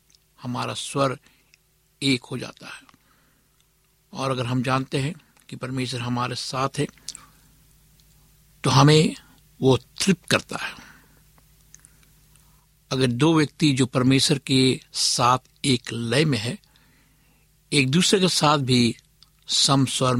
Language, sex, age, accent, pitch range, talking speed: Hindi, male, 60-79, native, 130-150 Hz, 120 wpm